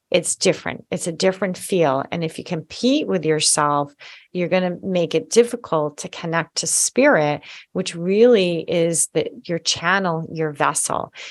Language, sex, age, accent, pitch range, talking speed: English, female, 30-49, American, 155-190 Hz, 160 wpm